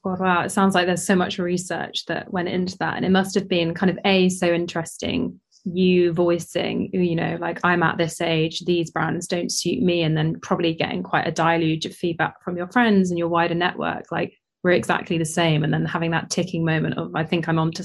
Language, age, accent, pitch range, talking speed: English, 20-39, British, 165-185 Hz, 225 wpm